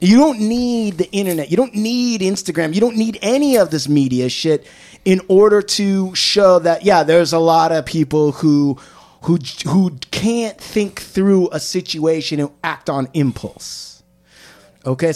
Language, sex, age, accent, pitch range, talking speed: English, male, 30-49, American, 135-195 Hz, 160 wpm